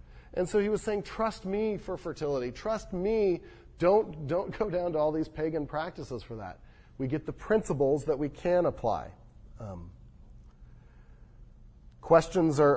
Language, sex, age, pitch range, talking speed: English, male, 40-59, 120-155 Hz, 155 wpm